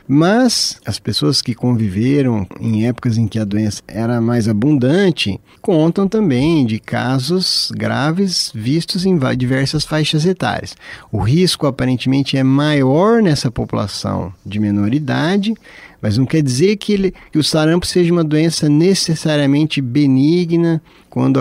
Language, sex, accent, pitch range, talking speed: Portuguese, male, Brazilian, 120-160 Hz, 135 wpm